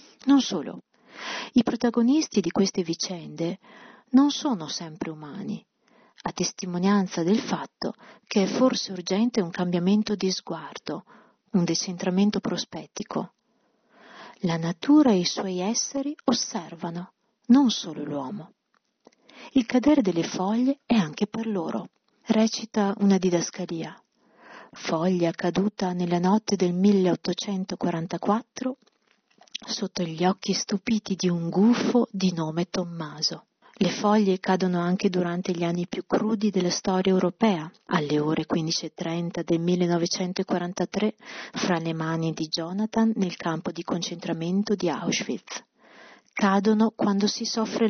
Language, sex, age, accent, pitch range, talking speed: Italian, female, 40-59, native, 175-215 Hz, 120 wpm